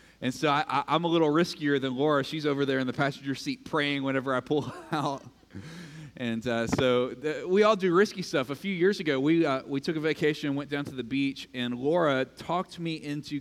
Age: 30-49